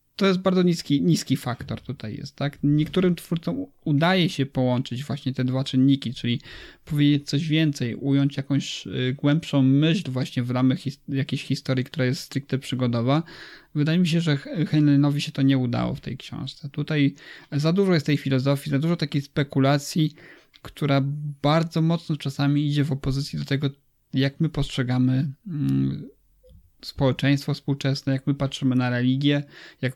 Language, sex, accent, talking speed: Polish, male, native, 160 wpm